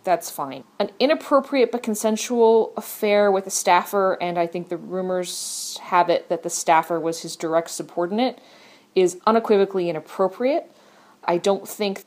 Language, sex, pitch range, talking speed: English, female, 160-215 Hz, 150 wpm